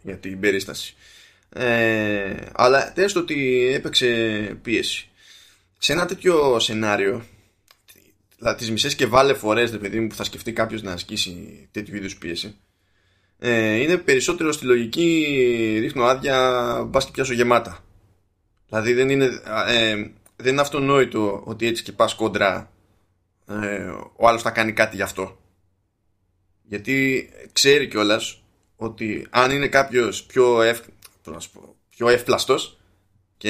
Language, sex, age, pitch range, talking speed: Greek, male, 20-39, 100-125 Hz, 130 wpm